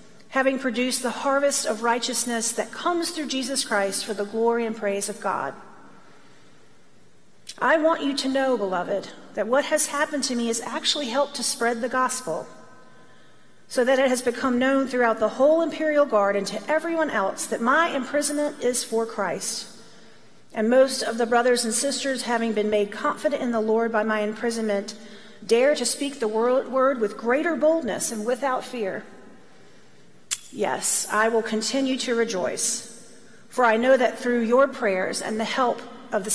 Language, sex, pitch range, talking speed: English, female, 215-260 Hz, 170 wpm